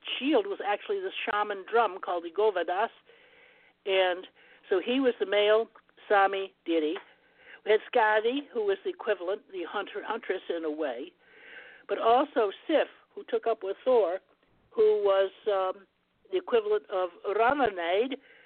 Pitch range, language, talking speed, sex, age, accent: 195-325 Hz, English, 145 wpm, male, 60-79, American